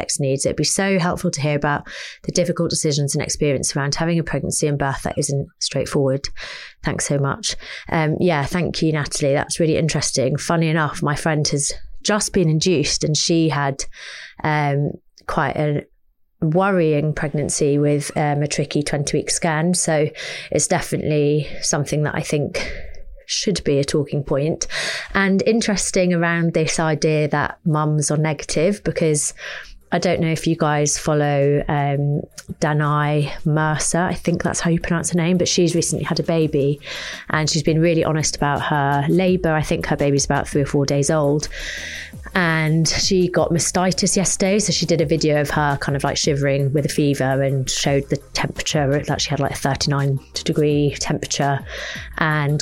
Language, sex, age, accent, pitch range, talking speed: English, female, 30-49, British, 145-170 Hz, 170 wpm